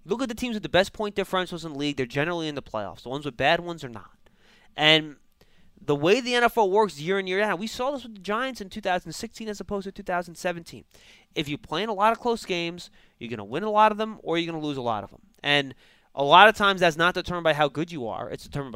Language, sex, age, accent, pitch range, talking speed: English, male, 20-39, American, 140-190 Hz, 280 wpm